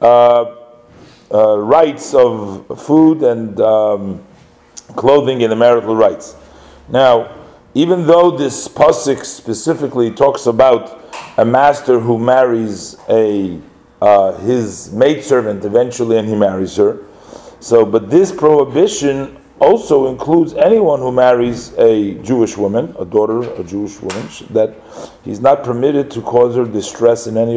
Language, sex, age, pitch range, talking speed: English, male, 40-59, 105-135 Hz, 130 wpm